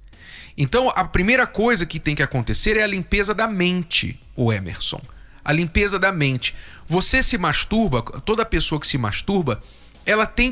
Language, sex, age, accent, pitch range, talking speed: Portuguese, male, 40-59, Brazilian, 125-210 Hz, 165 wpm